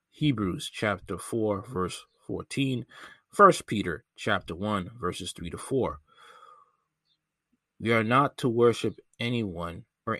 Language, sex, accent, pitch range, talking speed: English, male, American, 95-120 Hz, 120 wpm